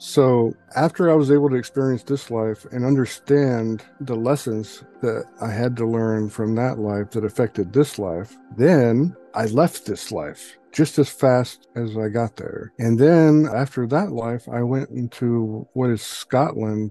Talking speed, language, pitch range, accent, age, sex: 170 wpm, English, 105-130 Hz, American, 60-79, male